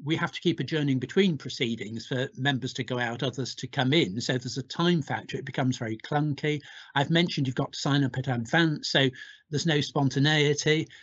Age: 60-79